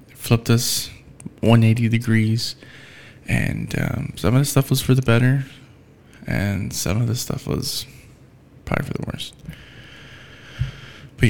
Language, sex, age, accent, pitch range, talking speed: English, male, 20-39, American, 110-135 Hz, 135 wpm